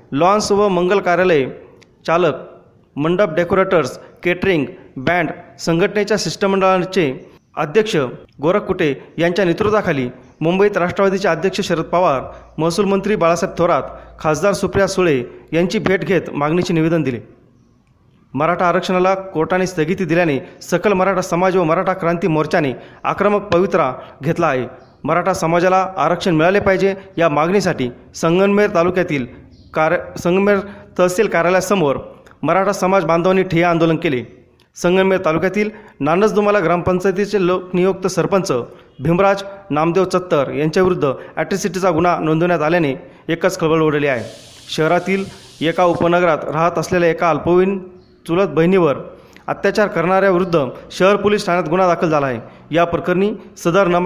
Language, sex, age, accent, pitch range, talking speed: Marathi, male, 30-49, native, 160-190 Hz, 120 wpm